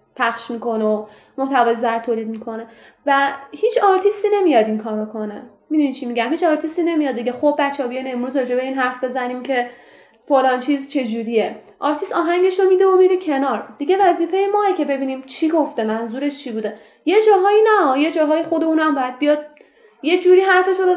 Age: 10-29